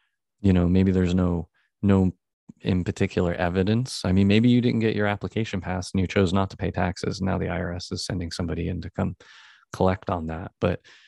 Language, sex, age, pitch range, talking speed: English, male, 30-49, 90-105 Hz, 210 wpm